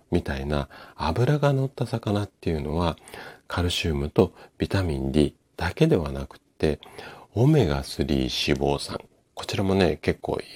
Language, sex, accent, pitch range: Japanese, male, native, 75-110 Hz